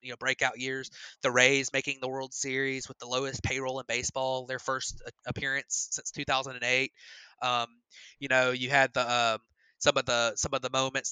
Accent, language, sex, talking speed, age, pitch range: American, English, male, 190 wpm, 20-39, 120-135 Hz